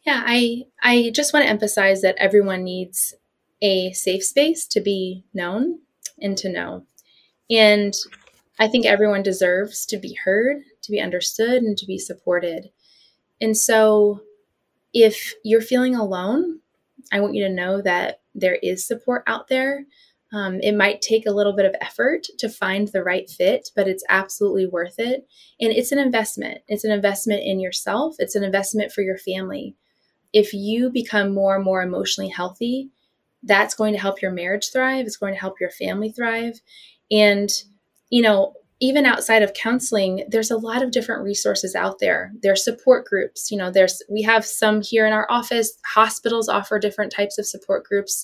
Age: 20-39